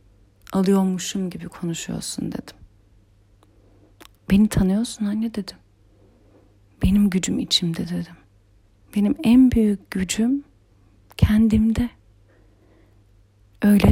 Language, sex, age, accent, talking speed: Turkish, female, 40-59, native, 80 wpm